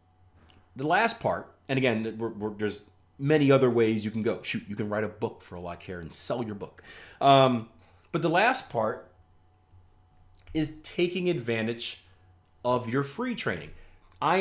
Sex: male